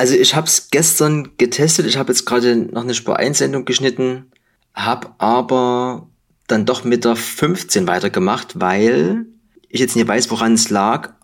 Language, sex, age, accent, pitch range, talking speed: German, male, 30-49, German, 110-130 Hz, 160 wpm